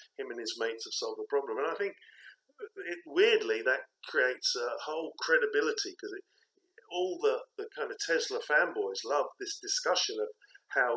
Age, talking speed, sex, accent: 50-69, 175 wpm, male, British